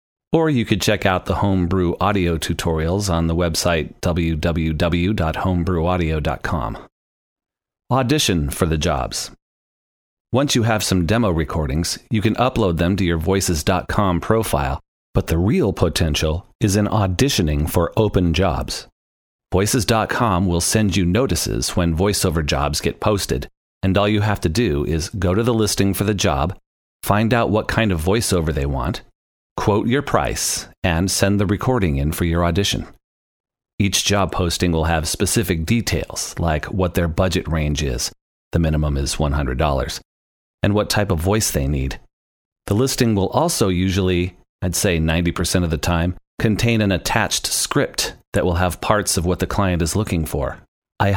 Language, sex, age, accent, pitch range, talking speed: English, male, 40-59, American, 80-105 Hz, 160 wpm